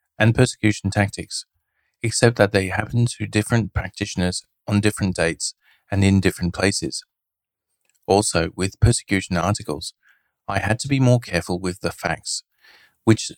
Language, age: English, 40-59